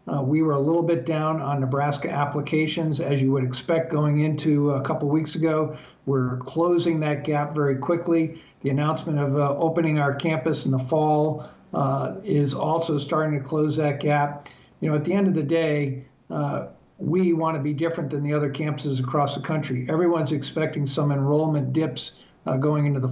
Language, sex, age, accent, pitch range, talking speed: English, male, 50-69, American, 140-160 Hz, 190 wpm